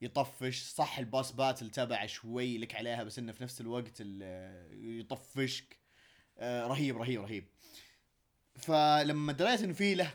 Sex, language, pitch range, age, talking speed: male, Arabic, 115-160 Hz, 30-49, 135 wpm